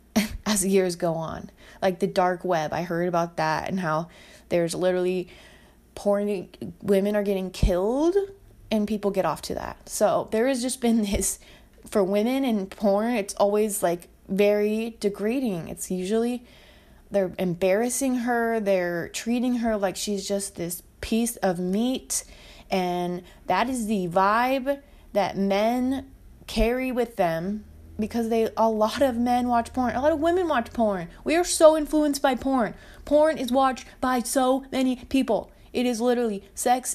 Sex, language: female, English